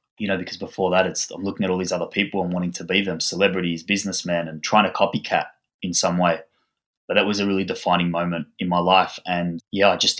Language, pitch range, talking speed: English, 90-105 Hz, 240 wpm